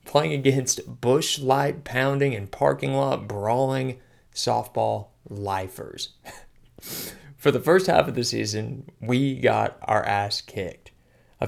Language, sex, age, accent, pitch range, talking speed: English, male, 20-39, American, 110-150 Hz, 125 wpm